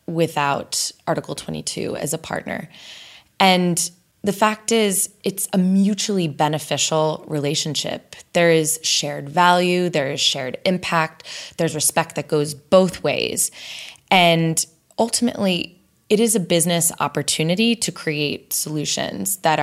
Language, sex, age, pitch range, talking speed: English, female, 20-39, 150-195 Hz, 120 wpm